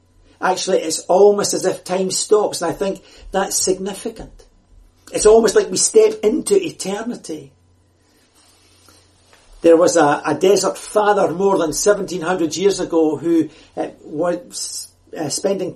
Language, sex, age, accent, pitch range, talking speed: English, male, 60-79, British, 140-195 Hz, 135 wpm